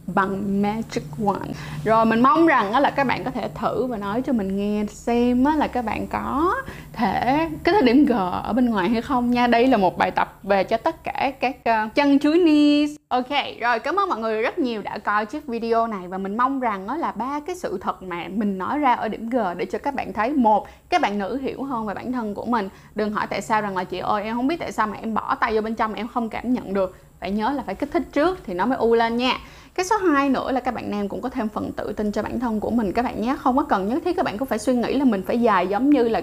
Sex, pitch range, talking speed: female, 215-280 Hz, 290 wpm